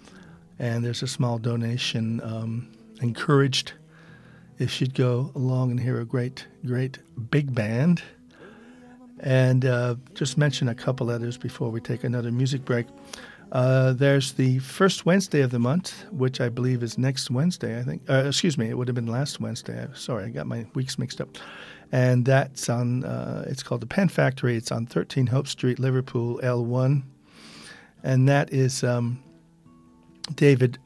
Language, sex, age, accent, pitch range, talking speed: English, male, 50-69, American, 120-140 Hz, 165 wpm